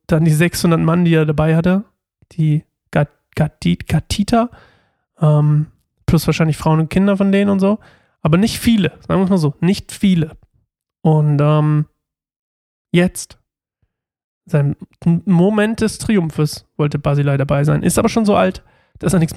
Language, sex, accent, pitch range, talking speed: German, male, German, 150-185 Hz, 160 wpm